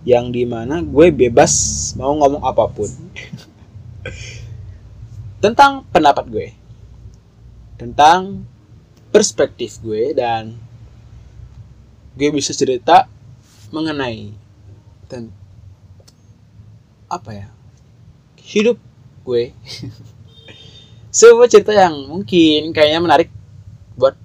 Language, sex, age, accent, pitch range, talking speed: Indonesian, male, 20-39, native, 110-130 Hz, 75 wpm